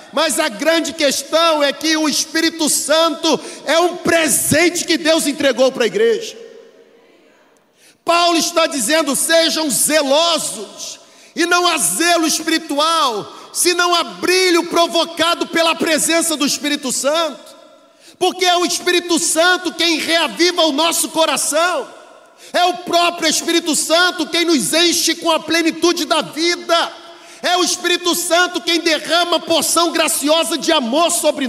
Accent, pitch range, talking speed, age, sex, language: Brazilian, 300-335 Hz, 135 wpm, 40-59, male, Portuguese